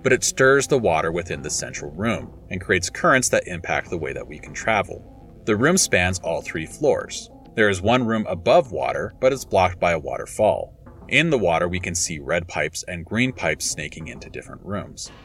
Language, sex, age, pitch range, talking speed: English, male, 30-49, 85-120 Hz, 210 wpm